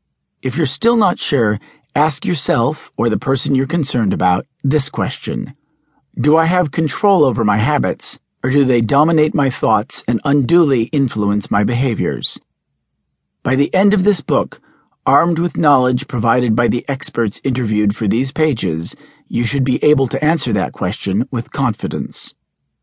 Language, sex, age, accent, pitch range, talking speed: English, male, 50-69, American, 115-155 Hz, 160 wpm